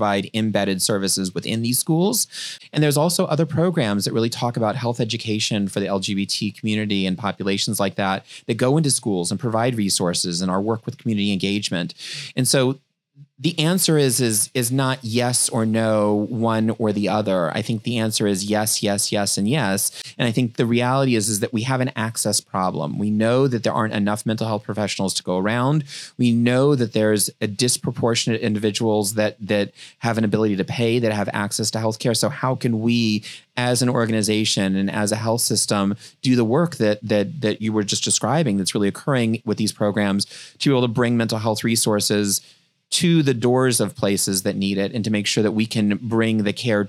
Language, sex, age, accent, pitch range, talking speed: English, male, 30-49, American, 105-125 Hz, 205 wpm